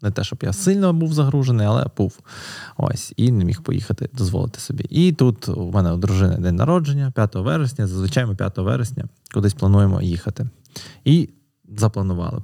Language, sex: Ukrainian, male